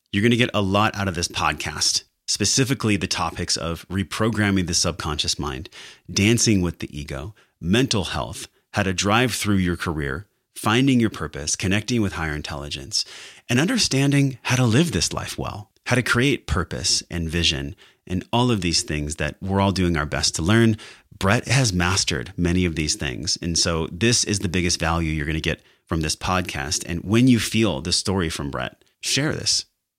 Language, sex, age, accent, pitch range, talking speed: English, male, 30-49, American, 80-110 Hz, 190 wpm